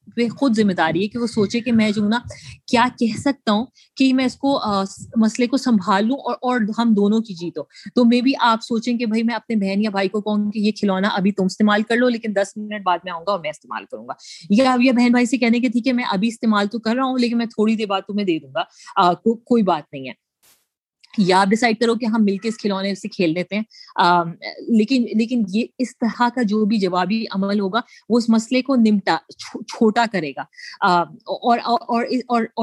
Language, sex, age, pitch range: Urdu, female, 30-49, 200-240 Hz